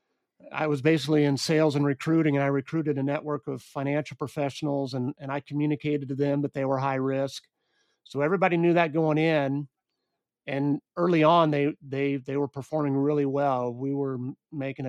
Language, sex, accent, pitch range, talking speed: English, male, American, 135-150 Hz, 180 wpm